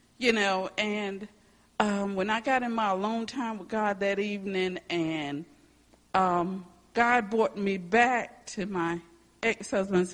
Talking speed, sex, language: 140 wpm, female, English